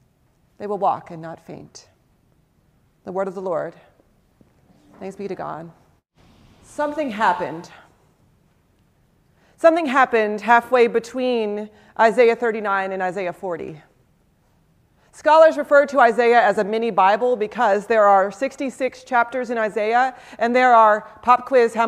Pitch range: 200-255 Hz